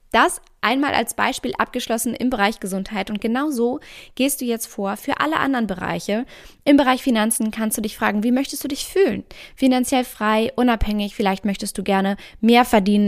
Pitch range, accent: 200-245 Hz, German